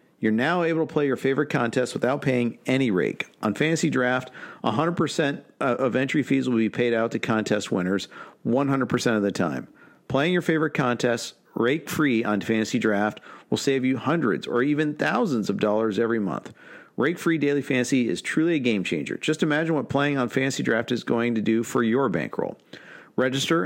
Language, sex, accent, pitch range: English, male, American, 110-140 Hz